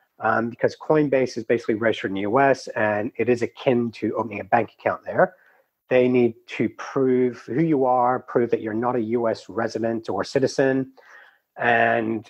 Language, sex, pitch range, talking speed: English, male, 115-140 Hz, 175 wpm